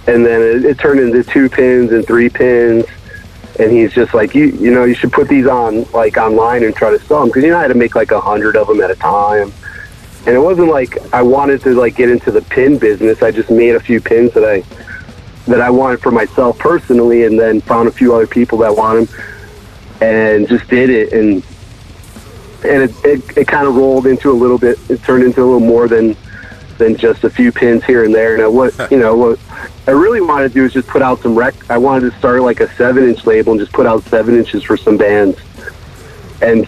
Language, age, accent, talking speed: English, 30-49, American, 240 wpm